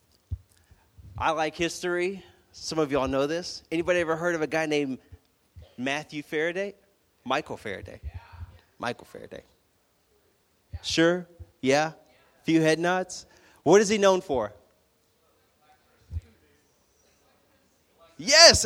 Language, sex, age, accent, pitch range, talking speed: English, male, 30-49, American, 120-175 Hz, 105 wpm